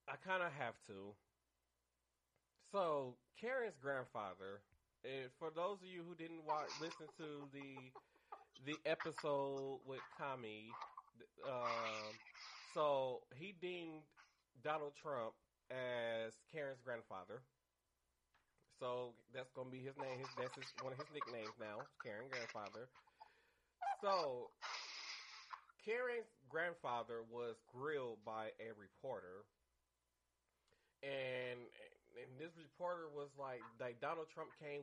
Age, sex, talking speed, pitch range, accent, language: 30-49, male, 115 wpm, 115-155 Hz, American, English